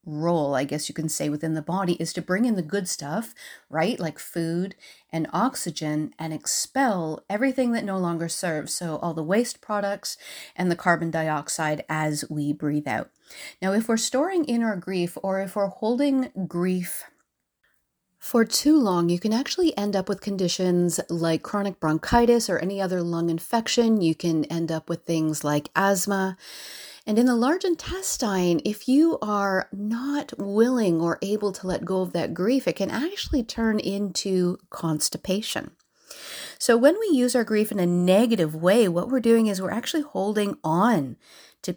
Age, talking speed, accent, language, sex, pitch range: 30-49, 175 wpm, American, English, female, 165-225 Hz